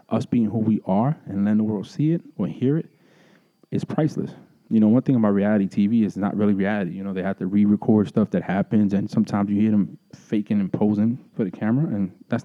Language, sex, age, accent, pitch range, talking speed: English, male, 20-39, American, 100-115 Hz, 235 wpm